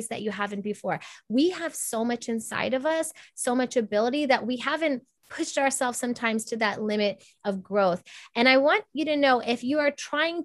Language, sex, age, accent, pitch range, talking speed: English, female, 20-39, American, 215-285 Hz, 200 wpm